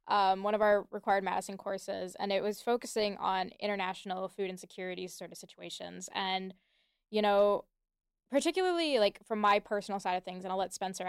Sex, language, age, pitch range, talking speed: female, English, 10-29, 195-220 Hz, 180 wpm